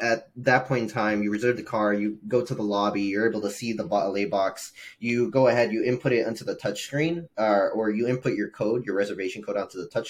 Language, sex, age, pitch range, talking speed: English, male, 20-39, 100-125 Hz, 255 wpm